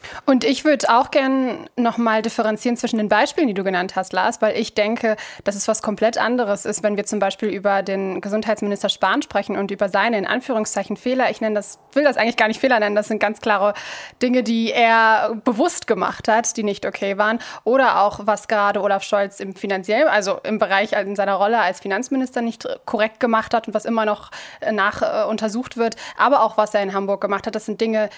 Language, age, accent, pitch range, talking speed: German, 20-39, German, 205-235 Hz, 215 wpm